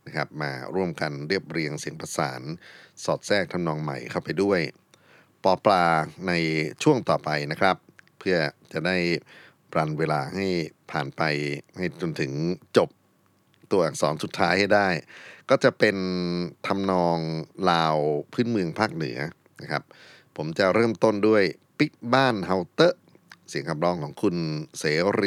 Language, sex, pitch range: Thai, male, 75-95 Hz